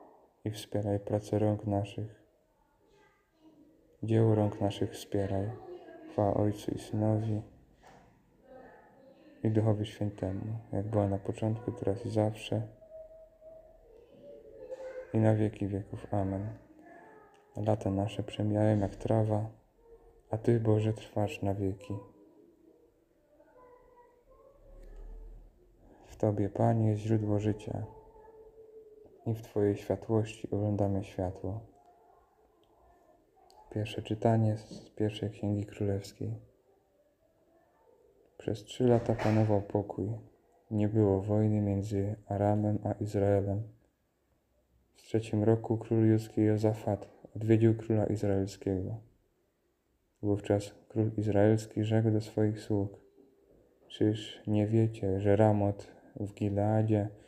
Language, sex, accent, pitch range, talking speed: Polish, male, native, 100-115 Hz, 95 wpm